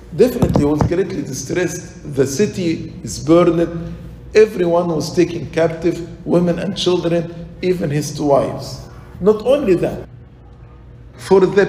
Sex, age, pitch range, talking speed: male, 50-69, 145-195 Hz, 125 wpm